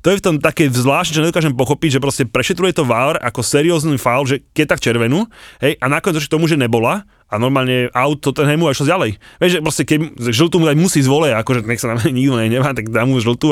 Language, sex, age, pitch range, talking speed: Slovak, male, 20-39, 110-145 Hz, 235 wpm